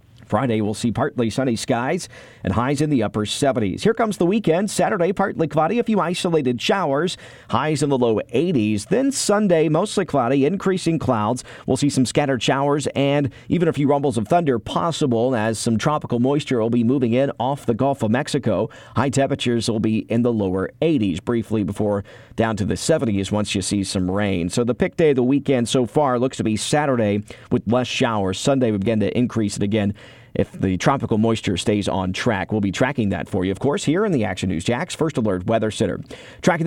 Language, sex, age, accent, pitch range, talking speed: English, male, 40-59, American, 110-145 Hz, 210 wpm